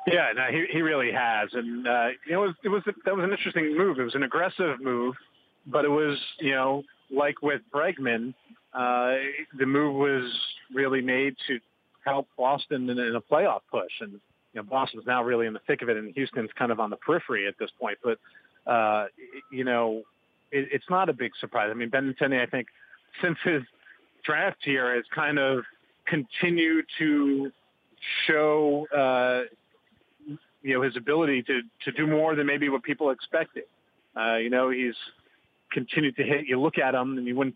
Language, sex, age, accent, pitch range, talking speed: English, male, 40-59, American, 120-145 Hz, 195 wpm